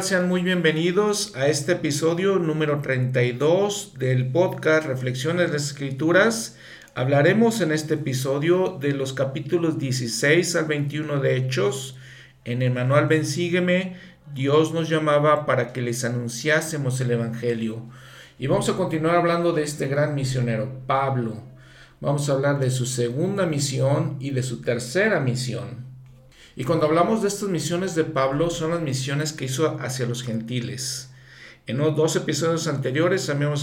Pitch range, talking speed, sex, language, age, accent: 125-155 Hz, 150 wpm, male, Spanish, 50-69, Mexican